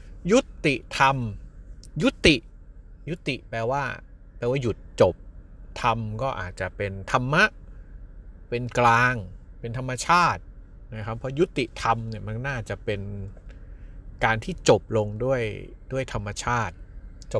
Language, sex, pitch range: Thai, male, 95-120 Hz